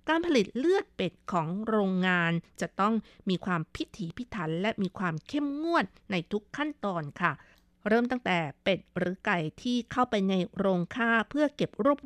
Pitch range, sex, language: 180-235 Hz, female, Thai